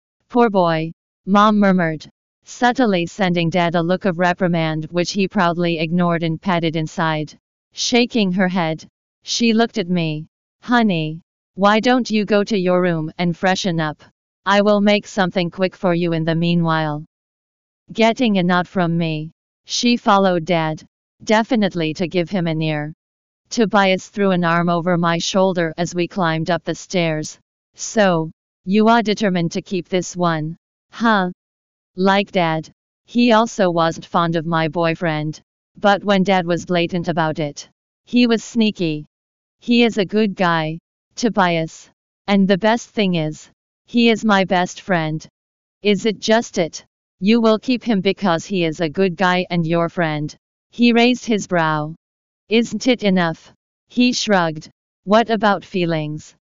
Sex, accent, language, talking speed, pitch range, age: female, American, English, 155 wpm, 165-210 Hz, 40-59